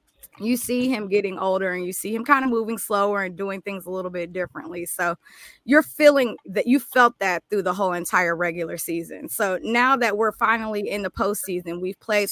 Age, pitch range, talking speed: 20-39, 180-215 Hz, 210 wpm